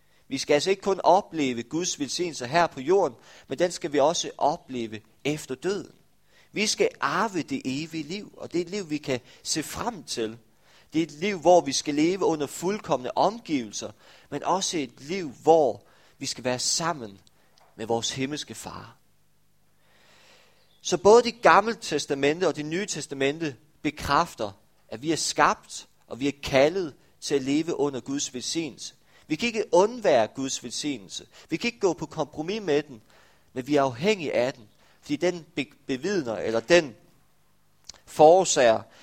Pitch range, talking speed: 120-175 Hz, 170 wpm